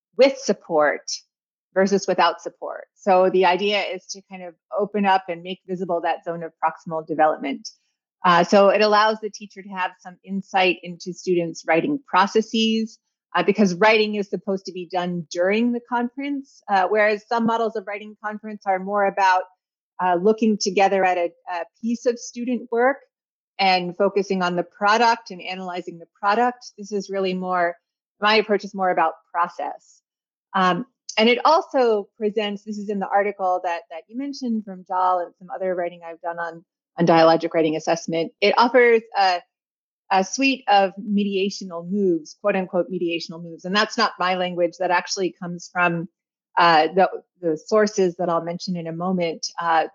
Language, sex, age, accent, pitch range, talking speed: English, female, 30-49, American, 175-215 Hz, 175 wpm